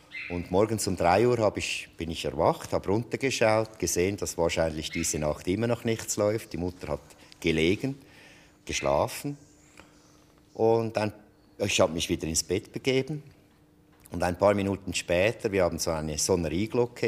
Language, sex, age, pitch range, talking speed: German, male, 50-69, 85-110 Hz, 160 wpm